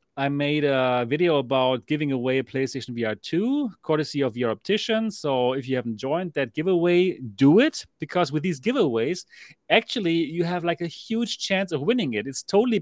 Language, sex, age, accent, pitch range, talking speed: English, male, 30-49, German, 130-175 Hz, 185 wpm